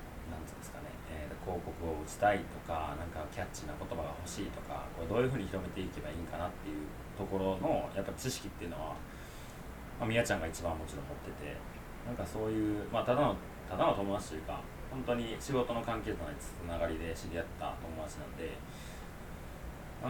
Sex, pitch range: male, 80-100 Hz